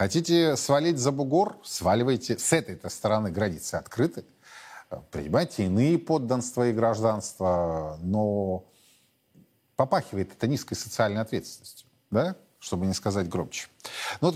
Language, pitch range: Russian, 105-135 Hz